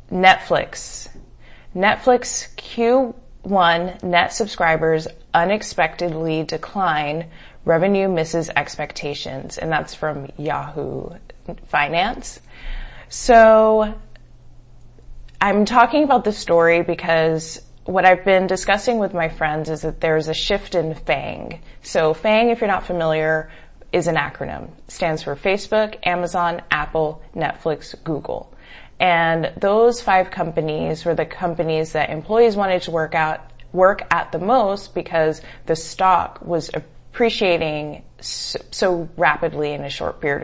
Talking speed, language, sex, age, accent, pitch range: 120 wpm, English, female, 20-39, American, 155-190 Hz